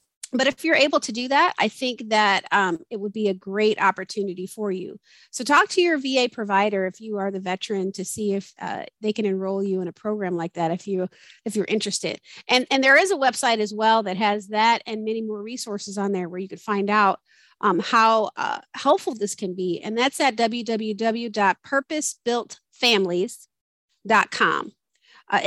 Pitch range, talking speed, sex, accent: 200-250 Hz, 195 wpm, female, American